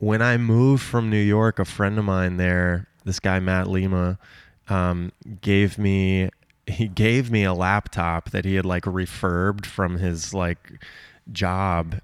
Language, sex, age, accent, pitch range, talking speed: English, male, 20-39, American, 90-105 Hz, 160 wpm